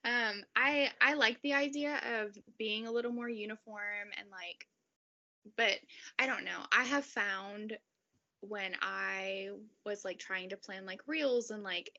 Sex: female